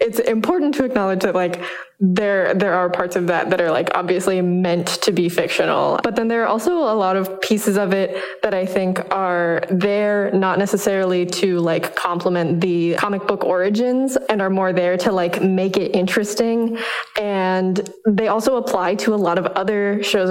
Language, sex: English, female